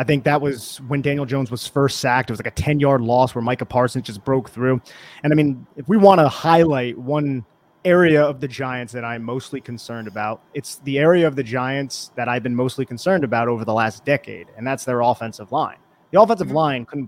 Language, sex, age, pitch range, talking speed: English, male, 30-49, 120-145 Hz, 230 wpm